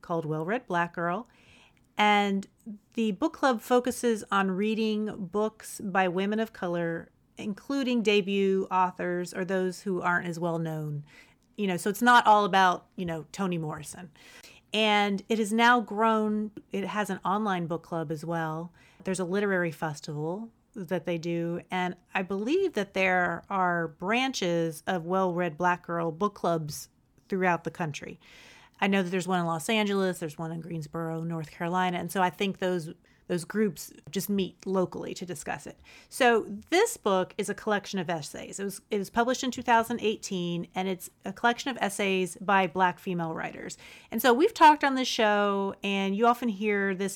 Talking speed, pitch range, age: 175 wpm, 175-215 Hz, 30-49